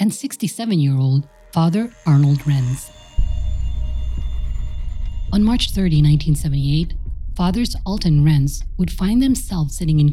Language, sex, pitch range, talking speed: English, female, 140-180 Hz, 100 wpm